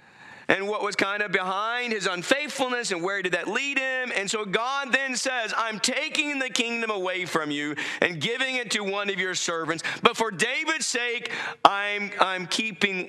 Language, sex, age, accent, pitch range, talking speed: English, male, 40-59, American, 160-245 Hz, 190 wpm